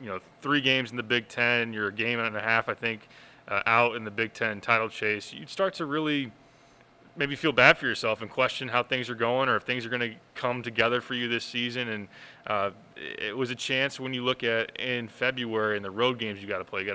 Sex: male